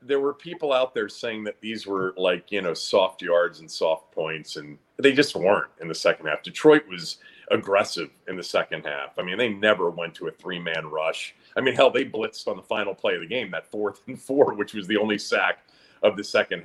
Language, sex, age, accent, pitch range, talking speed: English, male, 40-59, American, 105-170 Hz, 240 wpm